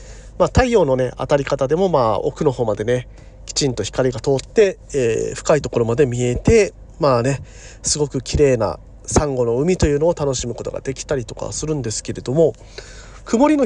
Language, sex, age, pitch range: Japanese, male, 40-59, 115-175 Hz